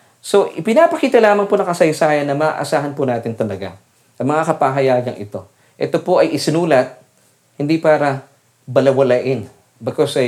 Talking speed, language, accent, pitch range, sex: 140 wpm, English, Filipino, 125-150 Hz, male